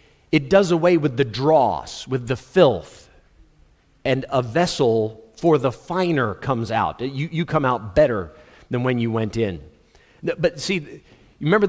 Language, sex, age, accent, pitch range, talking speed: English, male, 40-59, American, 115-155 Hz, 155 wpm